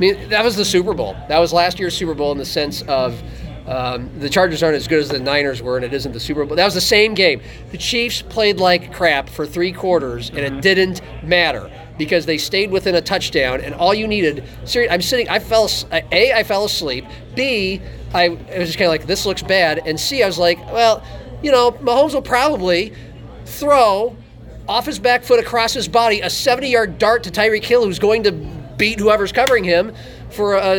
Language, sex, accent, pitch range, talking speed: English, male, American, 155-215 Hz, 220 wpm